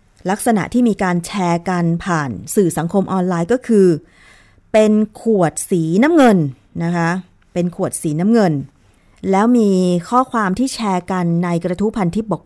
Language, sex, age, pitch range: Thai, female, 30-49, 160-225 Hz